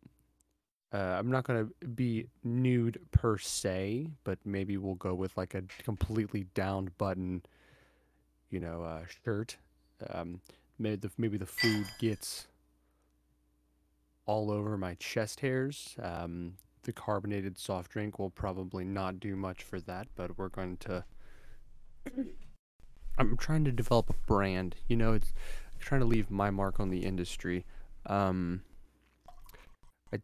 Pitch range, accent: 90-115 Hz, American